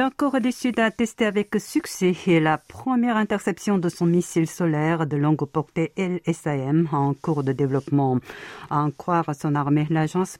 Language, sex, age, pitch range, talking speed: French, female, 50-69, 140-170 Hz, 165 wpm